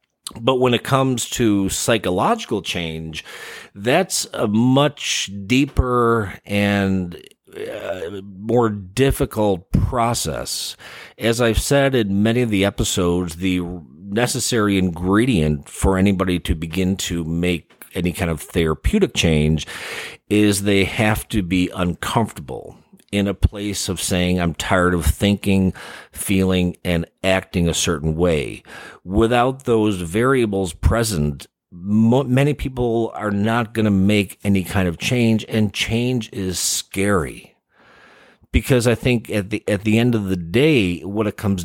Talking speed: 135 wpm